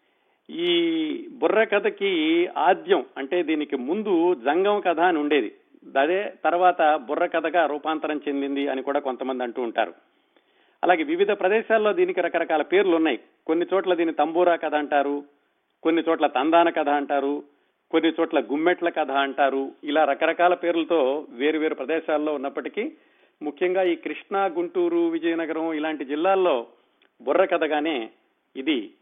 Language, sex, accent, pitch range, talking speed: Telugu, male, native, 145-225 Hz, 120 wpm